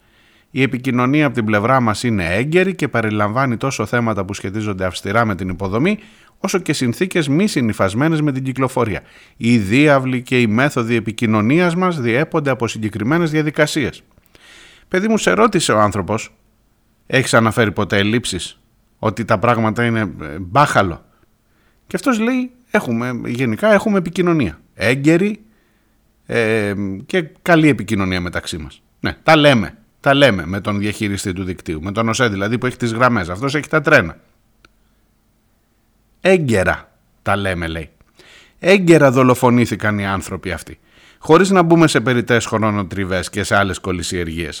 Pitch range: 110-165 Hz